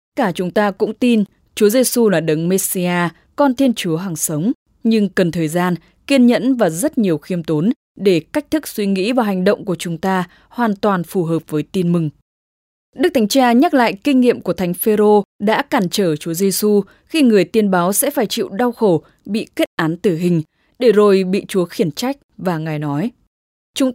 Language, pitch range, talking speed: English, 170-235 Hz, 210 wpm